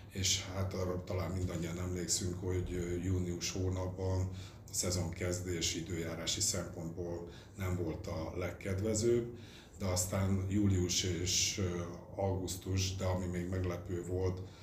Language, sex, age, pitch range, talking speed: Hungarian, male, 60-79, 90-100 Hz, 115 wpm